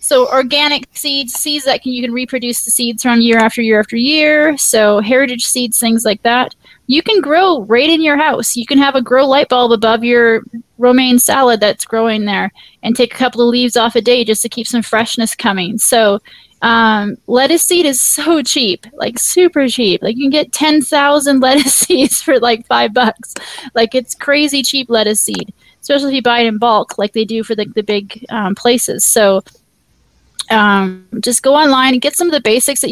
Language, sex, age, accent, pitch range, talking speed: English, female, 20-39, American, 225-270 Hz, 205 wpm